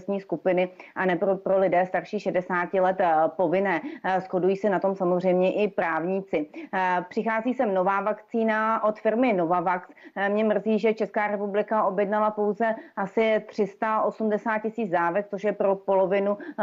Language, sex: Czech, female